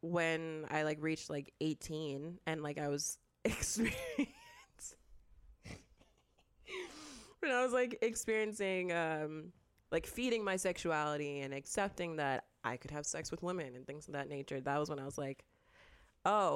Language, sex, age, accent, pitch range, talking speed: English, female, 20-39, American, 145-185 Hz, 150 wpm